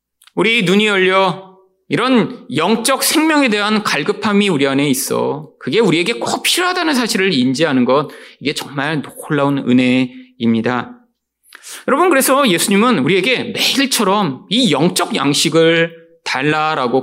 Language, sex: Korean, male